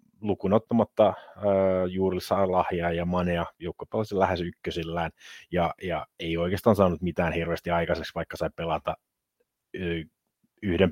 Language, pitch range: Finnish, 95-110 Hz